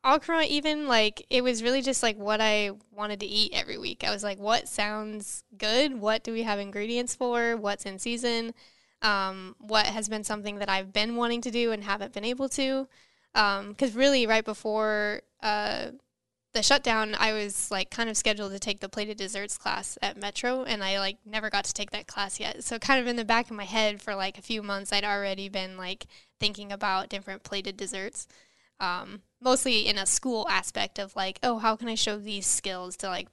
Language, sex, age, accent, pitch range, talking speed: English, female, 10-29, American, 200-235 Hz, 210 wpm